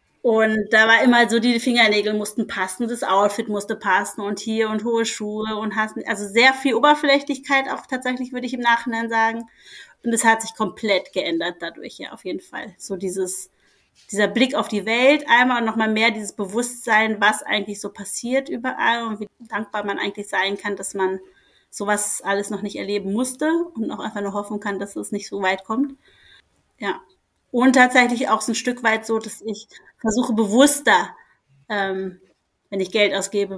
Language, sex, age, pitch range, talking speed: German, female, 30-49, 200-230 Hz, 185 wpm